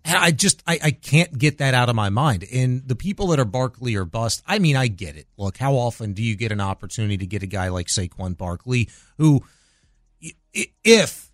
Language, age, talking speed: English, 30-49, 220 wpm